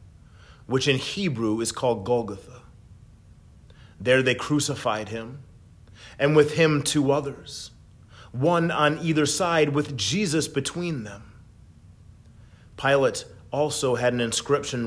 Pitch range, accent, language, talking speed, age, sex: 110-145 Hz, American, English, 115 wpm, 30-49, male